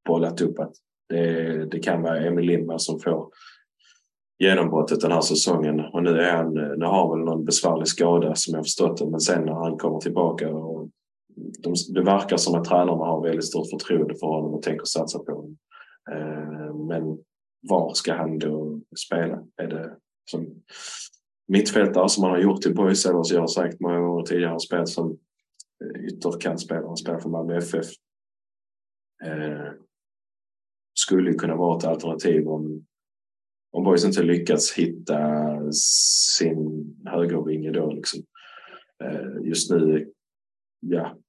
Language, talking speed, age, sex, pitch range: Swedish, 155 wpm, 20-39, male, 80-85 Hz